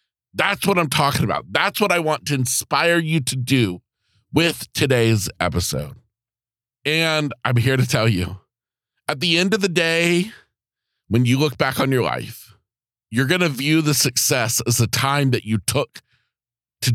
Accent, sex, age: American, male, 40-59